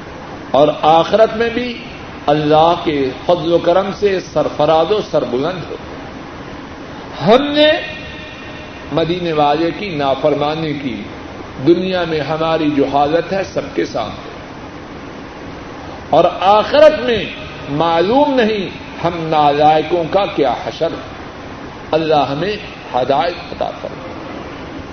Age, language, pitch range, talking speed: 50-69, Urdu, 145-185 Hz, 110 wpm